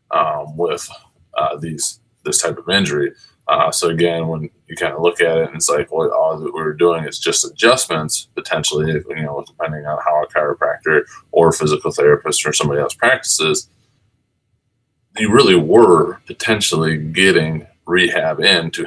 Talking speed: 170 wpm